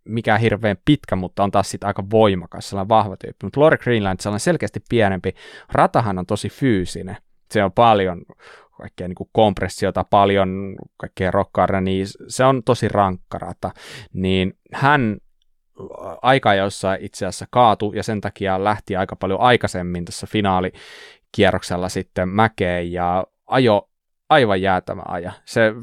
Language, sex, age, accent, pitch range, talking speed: Finnish, male, 20-39, native, 95-110 Hz, 140 wpm